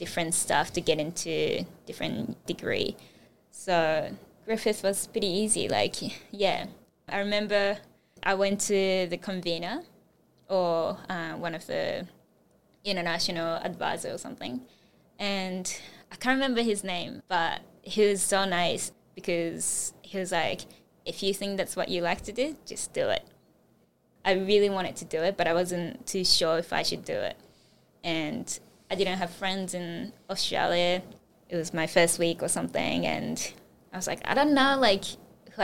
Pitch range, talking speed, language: 175-205 Hz, 160 wpm, English